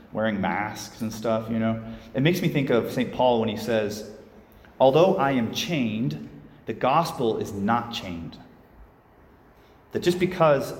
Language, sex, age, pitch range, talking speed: English, male, 30-49, 110-145 Hz, 155 wpm